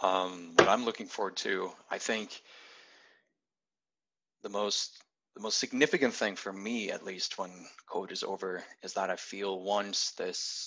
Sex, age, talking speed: male, 20-39, 150 wpm